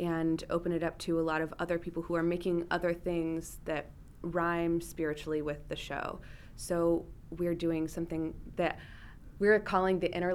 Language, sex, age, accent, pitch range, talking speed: English, female, 20-39, American, 165-185 Hz, 175 wpm